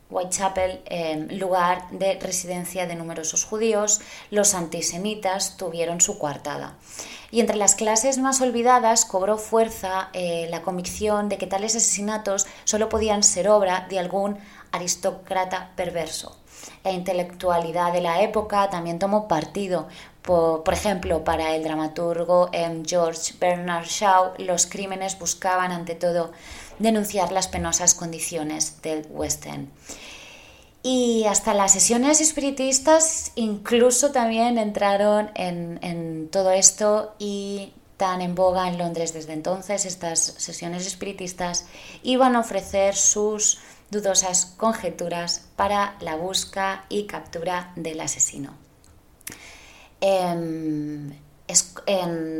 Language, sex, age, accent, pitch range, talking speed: Spanish, female, 20-39, Spanish, 170-205 Hz, 115 wpm